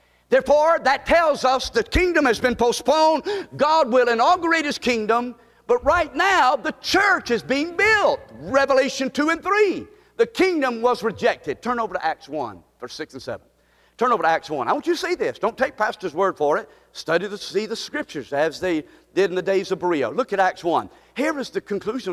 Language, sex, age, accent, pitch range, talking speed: English, male, 50-69, American, 210-310 Hz, 210 wpm